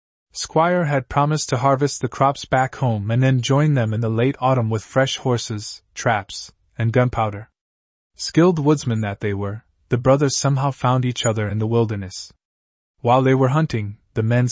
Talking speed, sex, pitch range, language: 180 wpm, male, 105-135 Hz, English